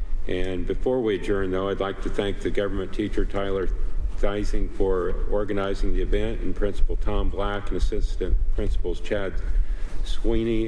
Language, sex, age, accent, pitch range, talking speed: English, male, 50-69, American, 90-100 Hz, 150 wpm